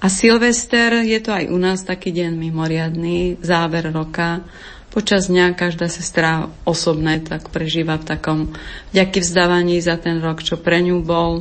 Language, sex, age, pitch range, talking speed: Slovak, female, 30-49, 165-190 Hz, 160 wpm